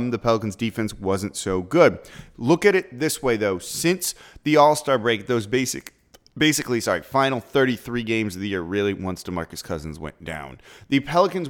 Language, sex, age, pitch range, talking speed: English, male, 30-49, 110-135 Hz, 185 wpm